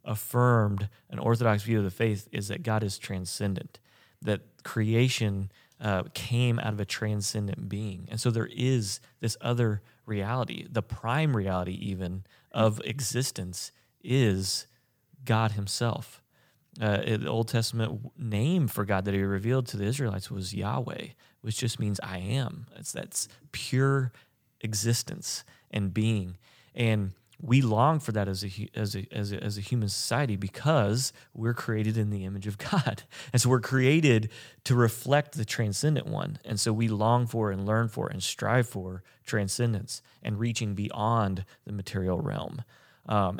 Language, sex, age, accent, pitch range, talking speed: English, male, 30-49, American, 105-125 Hz, 160 wpm